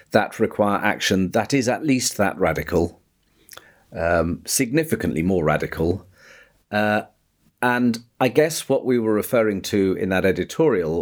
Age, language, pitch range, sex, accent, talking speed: 40-59, English, 90-120 Hz, male, British, 135 wpm